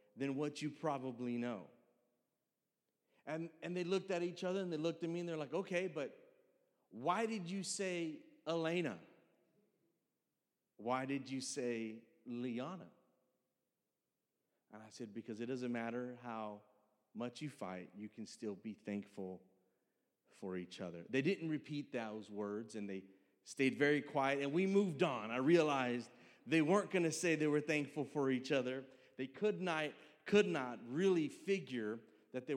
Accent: American